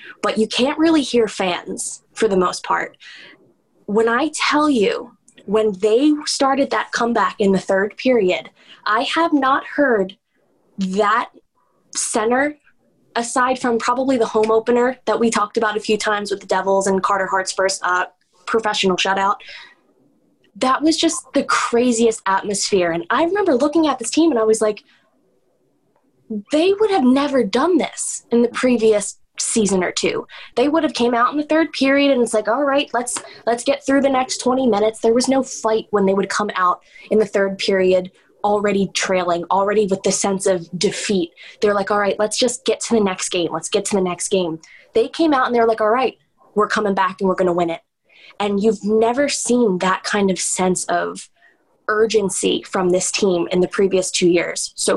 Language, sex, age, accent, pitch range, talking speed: English, female, 10-29, American, 195-255 Hz, 195 wpm